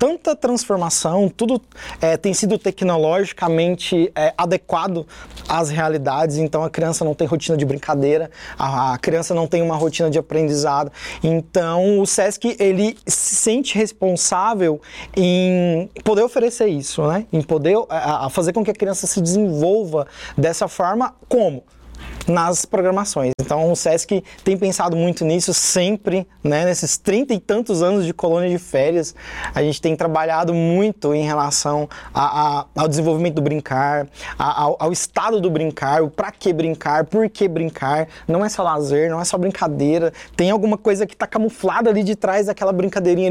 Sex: male